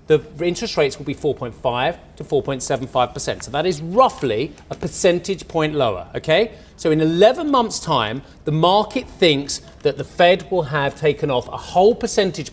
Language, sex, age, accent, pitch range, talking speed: English, male, 30-49, British, 140-190 Hz, 170 wpm